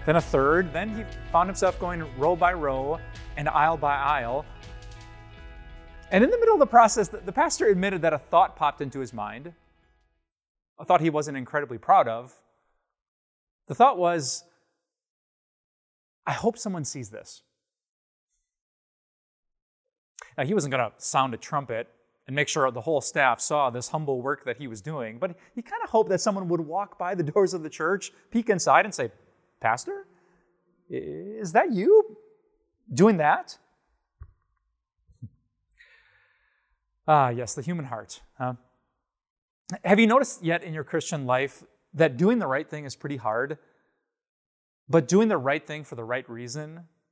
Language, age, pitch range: English, 30-49, 130-195 Hz